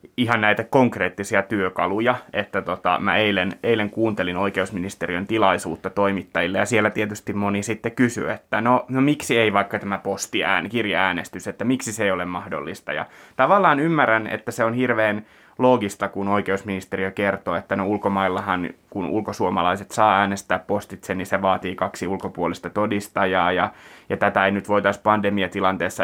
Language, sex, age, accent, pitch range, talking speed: Finnish, male, 20-39, native, 100-115 Hz, 150 wpm